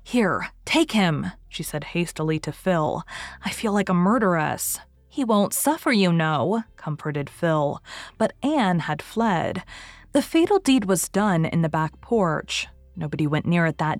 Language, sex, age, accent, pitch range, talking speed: English, female, 20-39, American, 160-220 Hz, 165 wpm